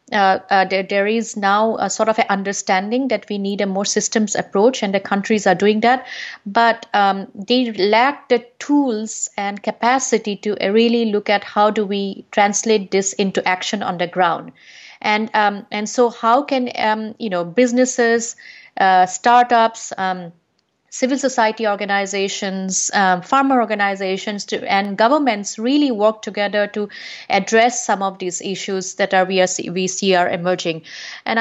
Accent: Indian